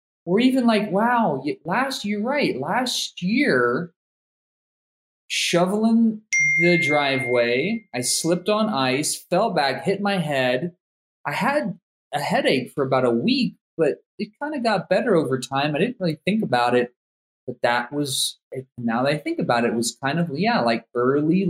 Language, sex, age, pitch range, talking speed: English, male, 20-39, 125-195 Hz, 160 wpm